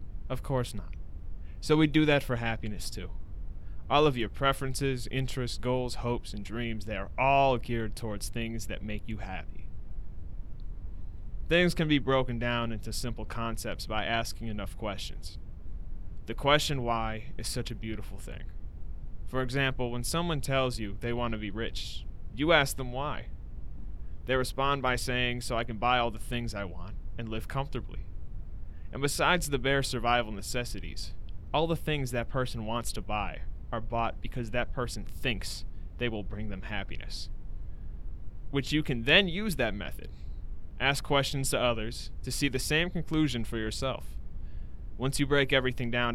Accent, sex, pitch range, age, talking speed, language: American, male, 95-130 Hz, 20-39, 165 wpm, English